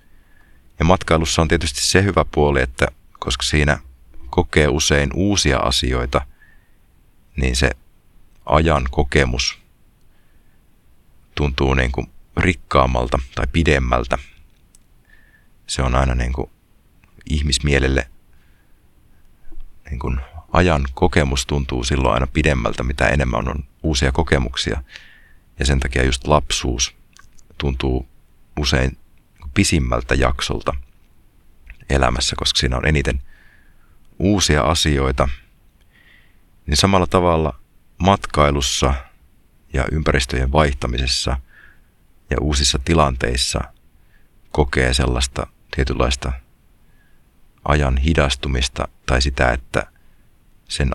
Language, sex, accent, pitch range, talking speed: Finnish, male, native, 65-80 Hz, 95 wpm